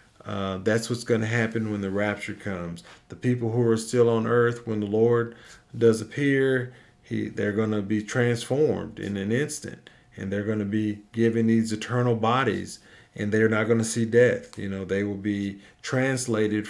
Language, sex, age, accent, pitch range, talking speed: English, male, 50-69, American, 100-120 Hz, 190 wpm